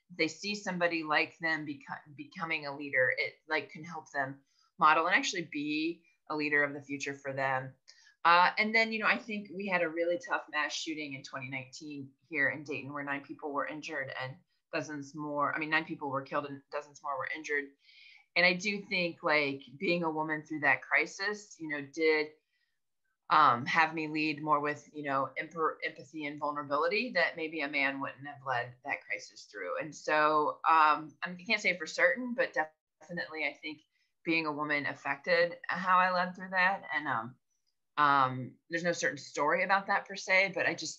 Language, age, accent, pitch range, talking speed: English, 30-49, American, 145-175 Hz, 200 wpm